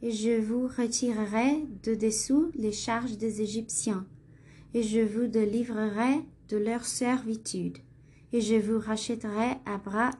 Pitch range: 205-235 Hz